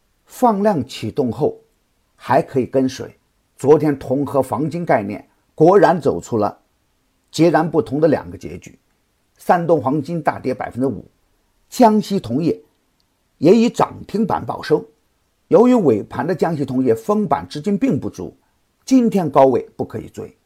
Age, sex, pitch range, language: 50-69, male, 125-200 Hz, Chinese